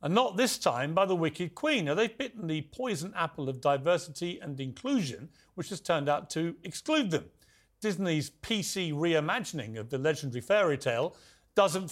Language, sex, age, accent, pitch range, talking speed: English, male, 40-59, British, 130-180 Hz, 170 wpm